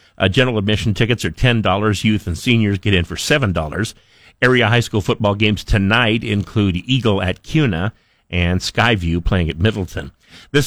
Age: 50-69